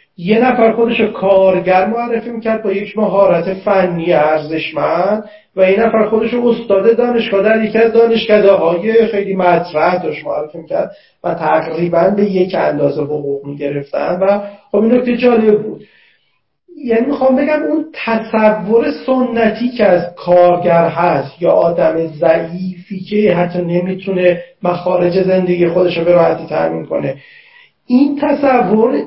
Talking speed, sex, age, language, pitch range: 130 wpm, male, 40-59, Persian, 185-230 Hz